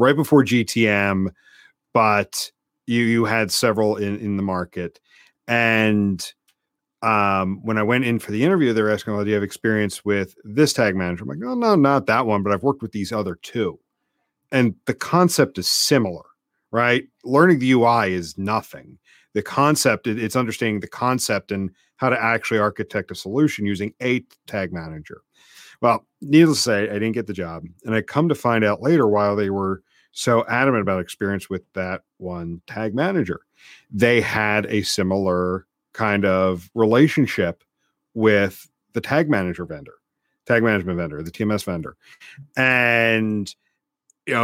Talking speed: 165 wpm